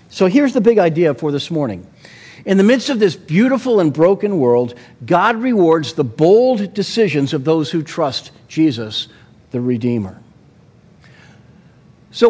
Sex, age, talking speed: male, 50-69, 145 wpm